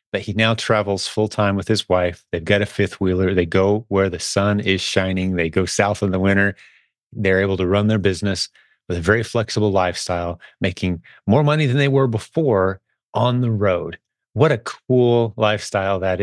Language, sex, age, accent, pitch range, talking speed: English, male, 30-49, American, 90-110 Hz, 190 wpm